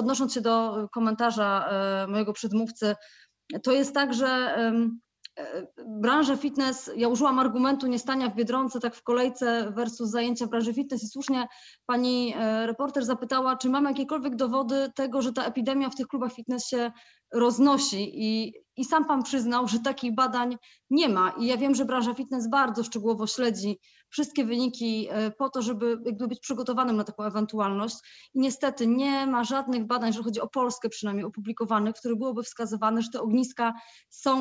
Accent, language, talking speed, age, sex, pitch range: native, Polish, 160 wpm, 20-39, female, 225-255 Hz